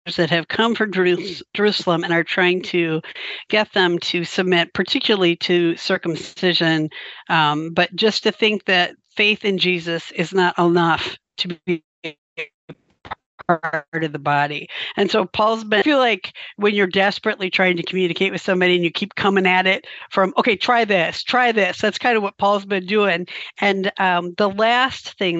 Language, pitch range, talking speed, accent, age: English, 175-205 Hz, 170 wpm, American, 50-69